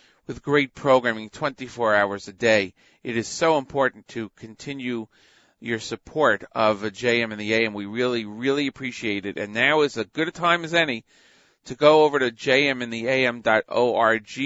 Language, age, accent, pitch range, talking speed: English, 40-59, American, 105-140 Hz, 170 wpm